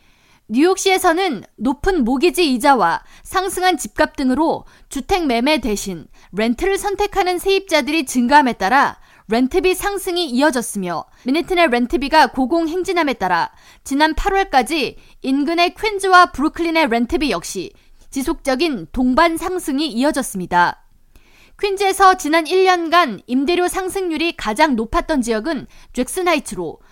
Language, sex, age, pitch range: Korean, female, 20-39, 255-360 Hz